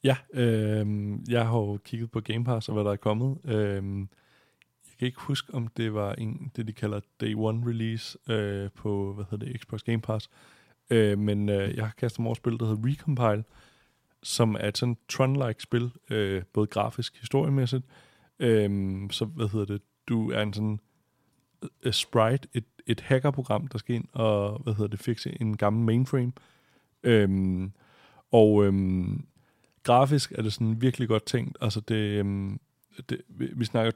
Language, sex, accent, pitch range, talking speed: Danish, male, native, 105-120 Hz, 175 wpm